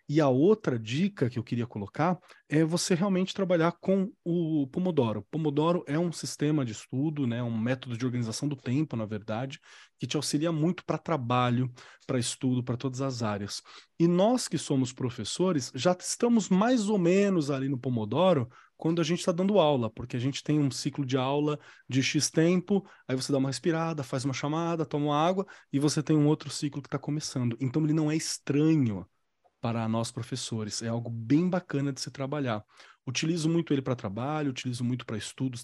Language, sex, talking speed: Portuguese, male, 195 wpm